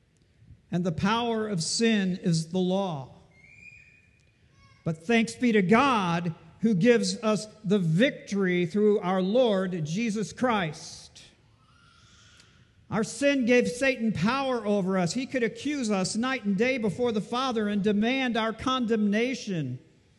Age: 50-69